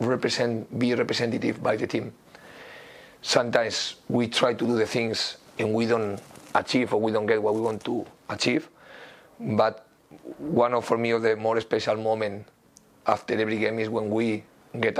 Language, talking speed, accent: English, 170 wpm, Spanish